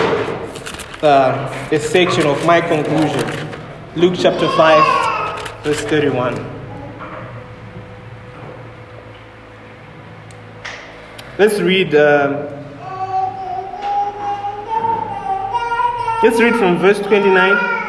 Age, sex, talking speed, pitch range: 20-39, male, 60 wpm, 135-200 Hz